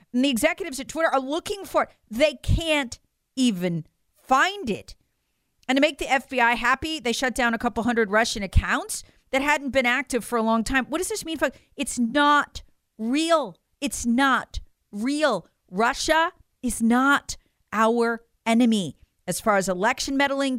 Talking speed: 160 wpm